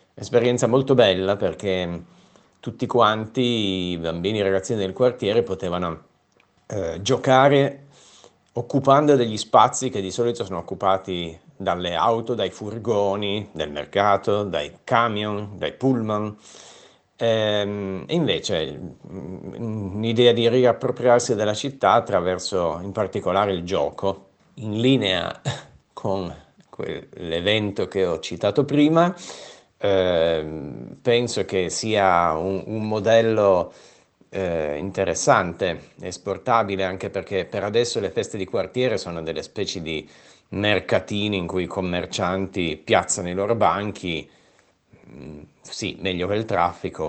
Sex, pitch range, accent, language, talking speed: male, 90-115 Hz, native, Italian, 110 wpm